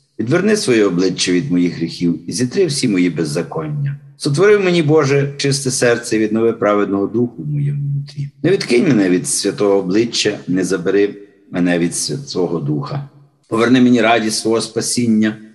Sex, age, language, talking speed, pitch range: male, 50-69, Ukrainian, 155 wpm, 105-140 Hz